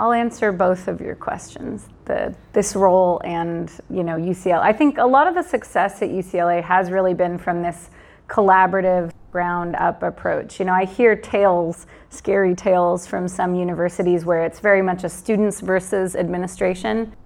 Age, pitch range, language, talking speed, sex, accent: 30-49, 175-205 Hz, English, 165 wpm, female, American